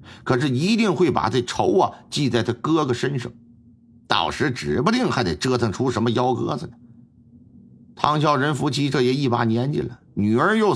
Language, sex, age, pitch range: Chinese, male, 50-69, 110-160 Hz